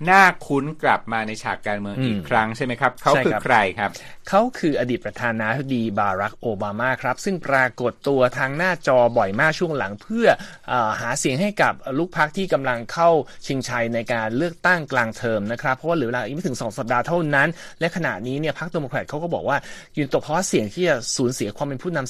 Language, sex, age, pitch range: Thai, male, 30-49, 120-150 Hz